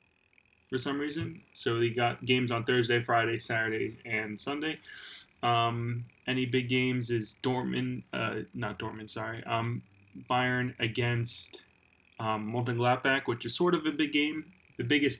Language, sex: English, male